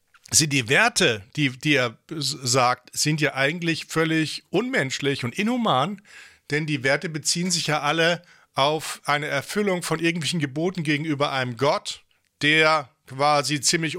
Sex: male